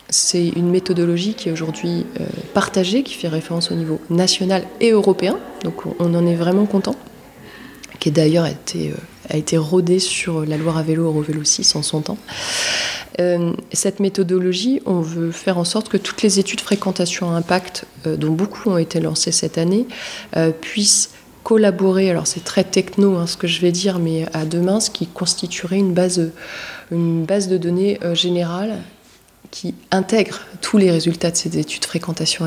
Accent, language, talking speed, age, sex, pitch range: French, French, 175 wpm, 20-39, female, 160-190 Hz